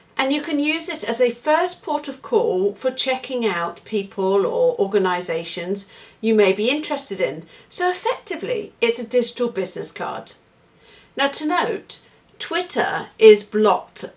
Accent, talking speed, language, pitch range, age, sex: British, 150 wpm, English, 190-265 Hz, 50-69, female